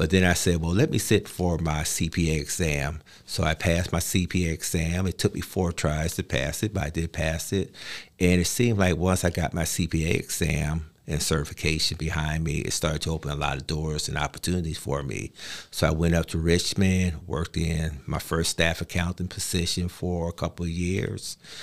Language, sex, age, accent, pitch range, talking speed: English, male, 50-69, American, 80-90 Hz, 210 wpm